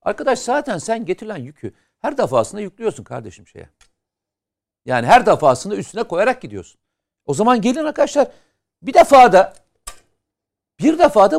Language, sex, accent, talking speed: Turkish, male, native, 125 wpm